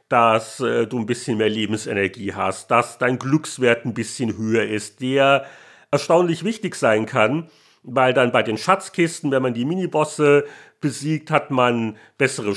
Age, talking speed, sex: 50-69, 160 wpm, male